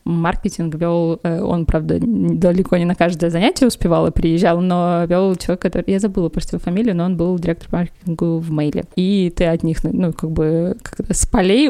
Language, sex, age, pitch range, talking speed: Russian, female, 20-39, 175-215 Hz, 195 wpm